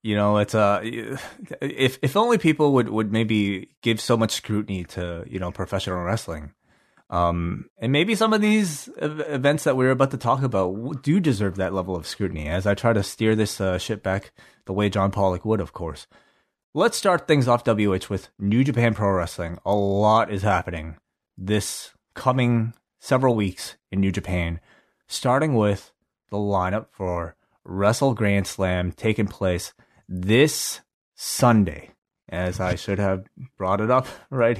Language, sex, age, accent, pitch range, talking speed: English, male, 30-49, American, 95-125 Hz, 170 wpm